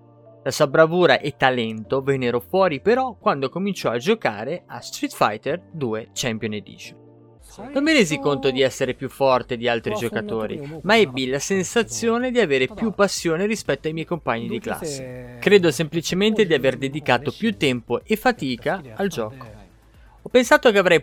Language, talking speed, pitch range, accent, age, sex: Italian, 165 wpm, 120-180 Hz, native, 20-39, male